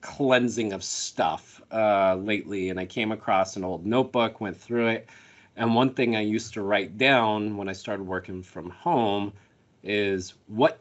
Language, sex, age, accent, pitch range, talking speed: English, male, 40-59, American, 95-115 Hz, 170 wpm